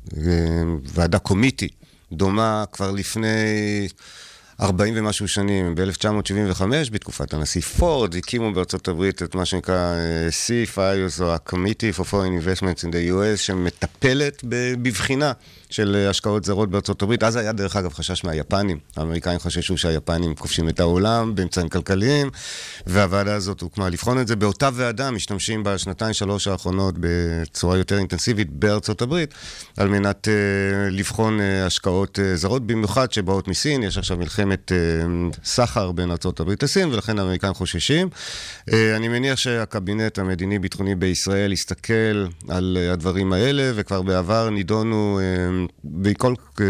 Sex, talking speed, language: male, 125 wpm, Hebrew